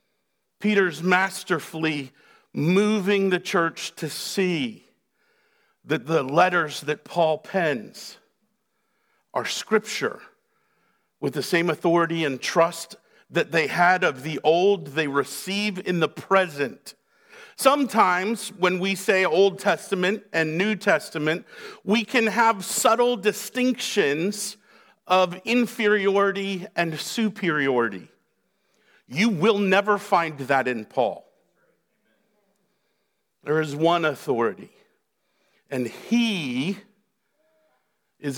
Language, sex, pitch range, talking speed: English, male, 175-230 Hz, 100 wpm